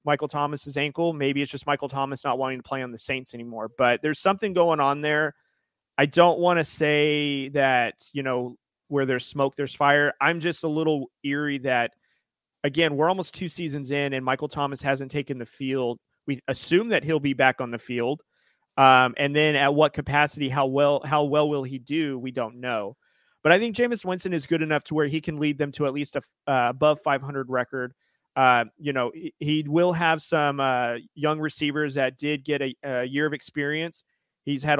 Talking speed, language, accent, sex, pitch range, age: 210 wpm, English, American, male, 135-155 Hz, 30-49